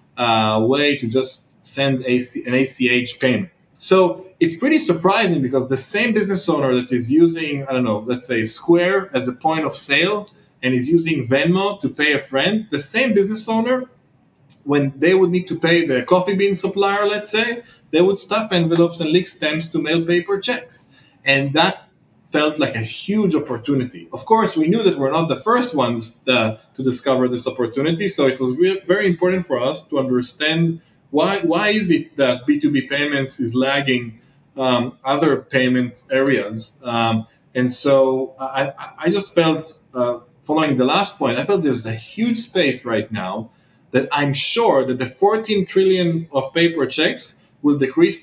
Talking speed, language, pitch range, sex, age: 180 wpm, English, 130-185 Hz, male, 20-39